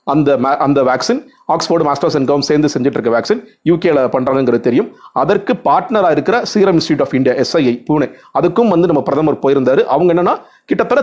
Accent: native